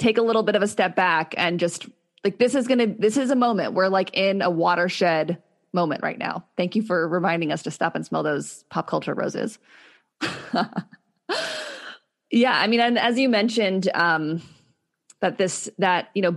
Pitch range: 175-235 Hz